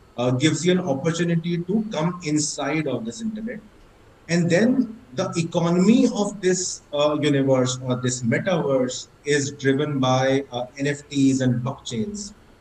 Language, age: English, 30-49